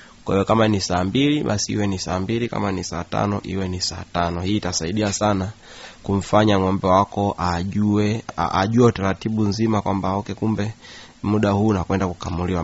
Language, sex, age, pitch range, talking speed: Swahili, male, 20-39, 95-115 Hz, 165 wpm